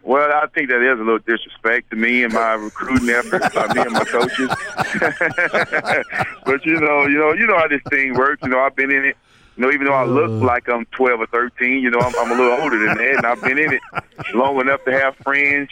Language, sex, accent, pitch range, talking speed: English, male, American, 120-140 Hz, 255 wpm